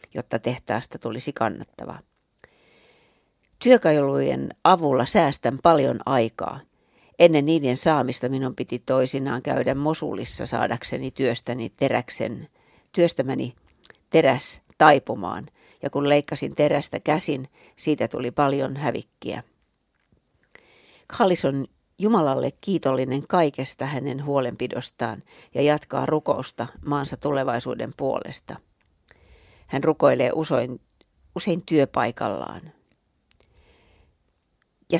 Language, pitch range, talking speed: Finnish, 130-165 Hz, 85 wpm